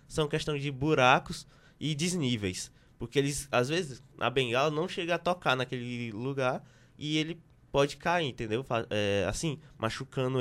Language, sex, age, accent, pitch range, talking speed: Portuguese, male, 20-39, Brazilian, 125-160 Hz, 150 wpm